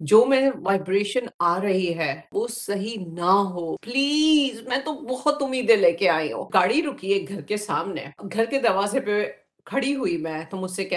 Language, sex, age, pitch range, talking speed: Urdu, female, 50-69, 180-250 Hz, 125 wpm